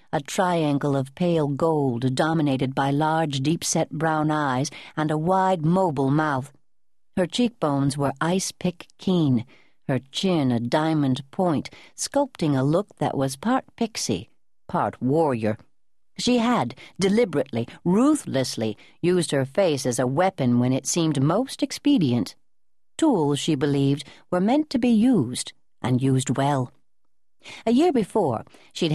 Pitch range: 130-180 Hz